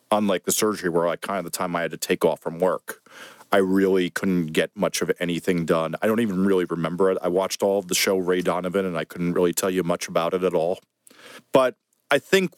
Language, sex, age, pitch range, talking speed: English, male, 40-59, 95-120 Hz, 250 wpm